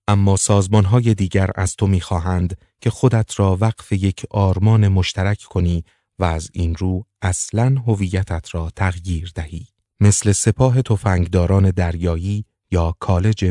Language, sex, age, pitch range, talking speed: Persian, male, 30-49, 90-110 Hz, 130 wpm